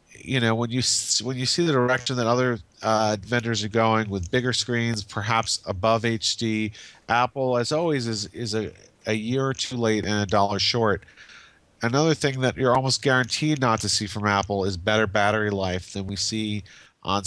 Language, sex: English, male